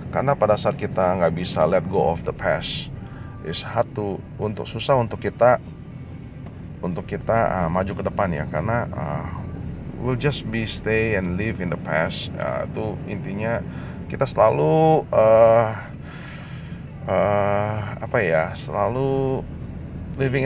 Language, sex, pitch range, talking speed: Indonesian, male, 95-135 Hz, 140 wpm